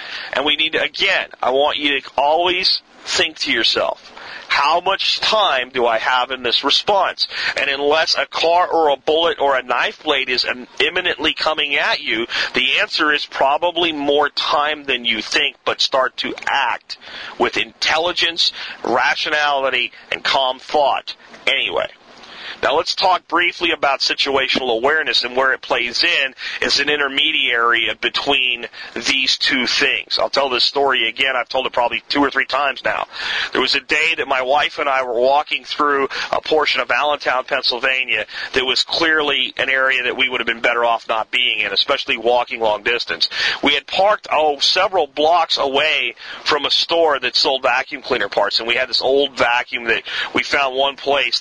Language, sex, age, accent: English, male, 40-59, American